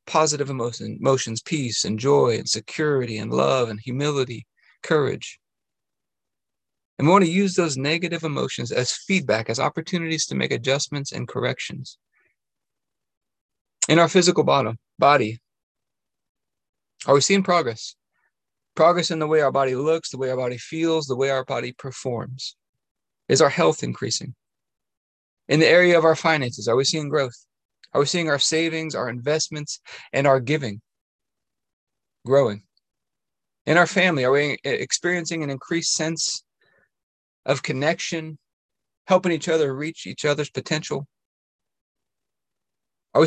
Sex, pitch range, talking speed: male, 130-165 Hz, 135 wpm